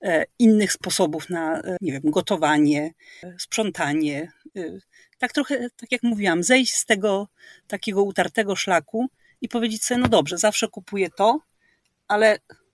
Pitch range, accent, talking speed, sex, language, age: 180-230 Hz, native, 120 wpm, female, Polish, 40-59